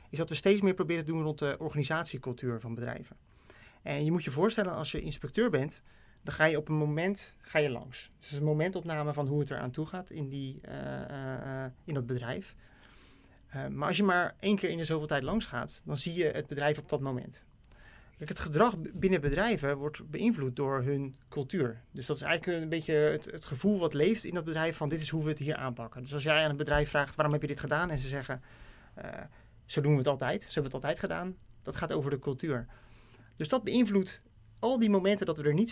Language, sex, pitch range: Dutch, male, 135-170 Hz